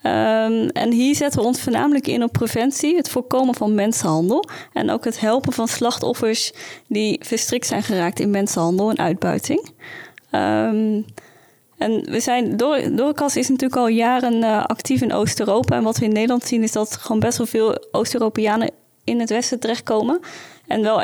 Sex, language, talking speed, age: female, Dutch, 165 wpm, 20-39